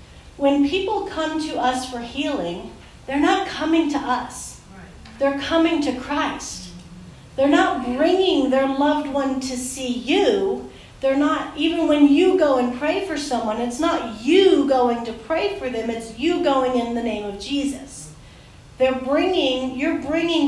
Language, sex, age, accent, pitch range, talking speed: English, female, 40-59, American, 240-300 Hz, 160 wpm